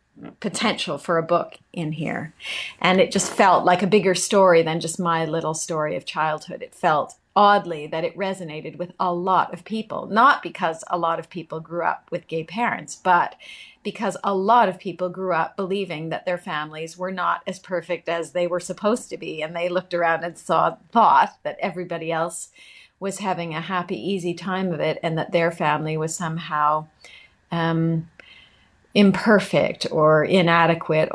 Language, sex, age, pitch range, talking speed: English, female, 40-59, 165-190 Hz, 180 wpm